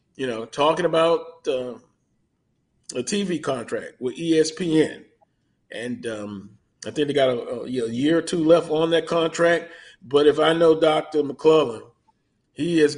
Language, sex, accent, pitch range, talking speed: English, male, American, 130-170 Hz, 155 wpm